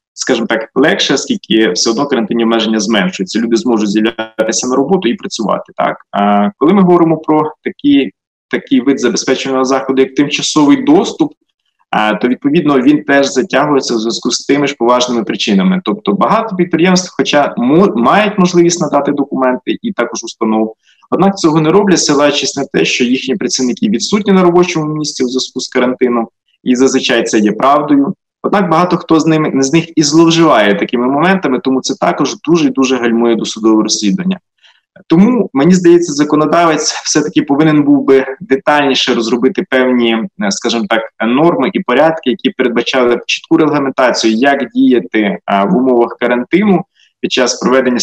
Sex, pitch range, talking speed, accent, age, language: male, 120-170 Hz, 155 wpm, native, 20-39, Ukrainian